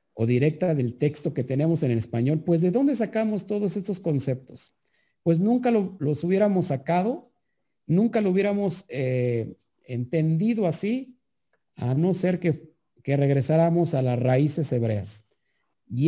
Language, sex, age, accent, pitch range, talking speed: Spanish, male, 50-69, Mexican, 125-185 Hz, 145 wpm